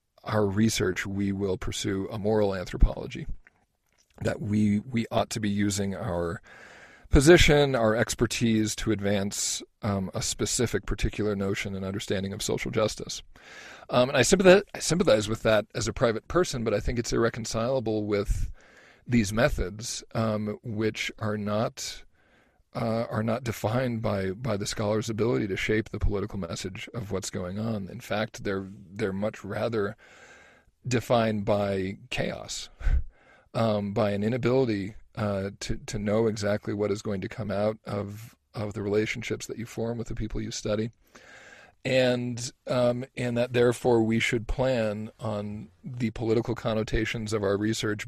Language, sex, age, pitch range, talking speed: English, male, 40-59, 100-115 Hz, 155 wpm